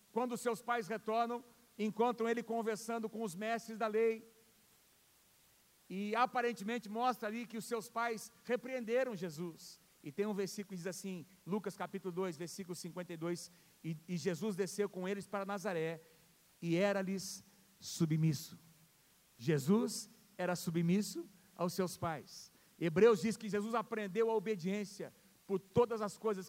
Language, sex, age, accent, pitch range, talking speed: Portuguese, male, 50-69, Brazilian, 180-225 Hz, 140 wpm